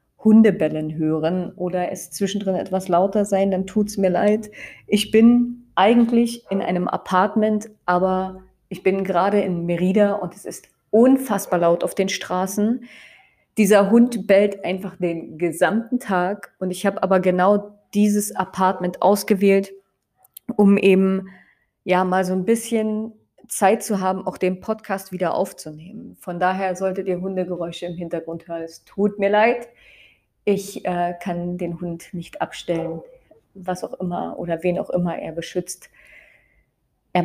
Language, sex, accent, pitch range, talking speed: German, female, German, 185-225 Hz, 150 wpm